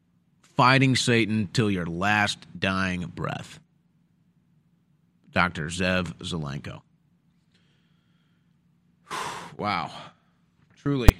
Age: 30-49